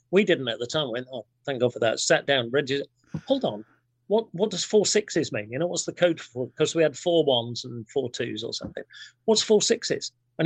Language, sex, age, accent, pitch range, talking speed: English, male, 40-59, British, 120-160 Hz, 245 wpm